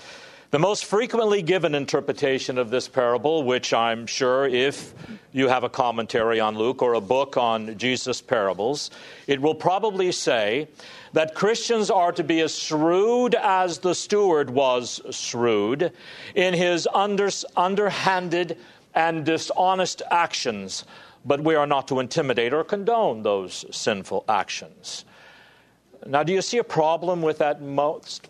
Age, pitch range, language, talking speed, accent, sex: 50-69, 125-185 Hz, English, 140 wpm, American, male